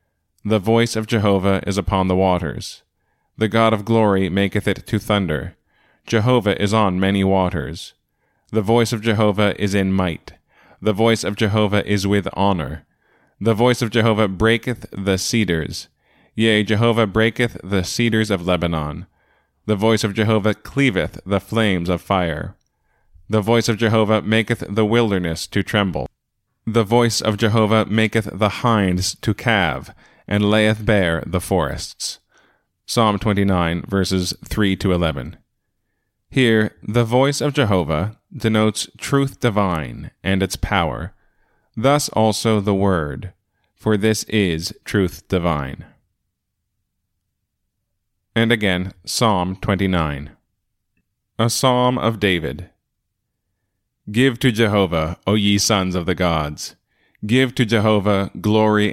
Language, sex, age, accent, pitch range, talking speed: English, male, 20-39, American, 95-115 Hz, 130 wpm